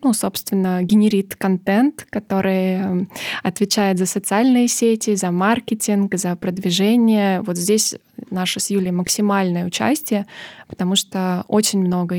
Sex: female